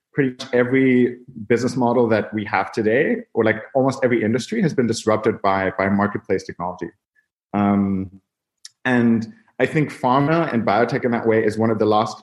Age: 30-49